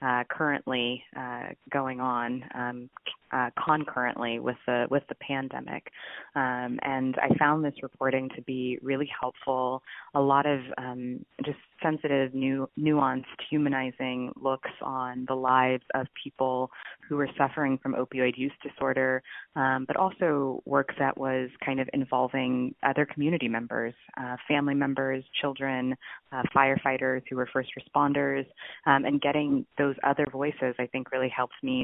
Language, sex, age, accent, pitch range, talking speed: English, female, 20-39, American, 125-140 Hz, 145 wpm